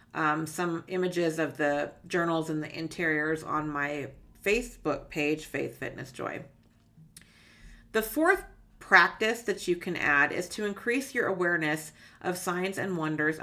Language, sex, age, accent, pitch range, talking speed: English, female, 40-59, American, 155-190 Hz, 145 wpm